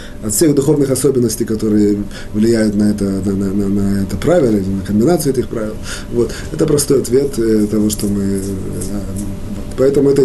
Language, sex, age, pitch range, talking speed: Russian, male, 30-49, 130-180 Hz, 160 wpm